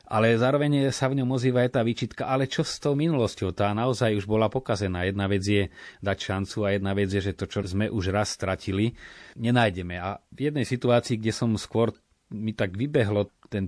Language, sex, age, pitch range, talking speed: Slovak, male, 30-49, 95-115 Hz, 200 wpm